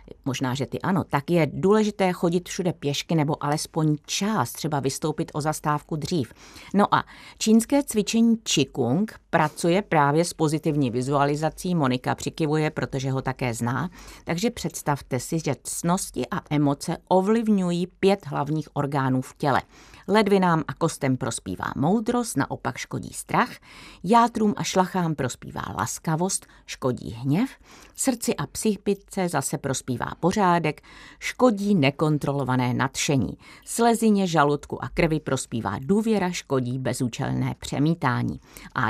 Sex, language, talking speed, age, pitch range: female, Czech, 125 wpm, 50-69, 135-185 Hz